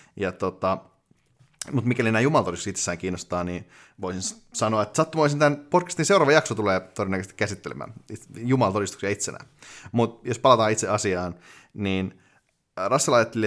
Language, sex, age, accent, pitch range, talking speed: Finnish, male, 30-49, native, 95-120 Hz, 130 wpm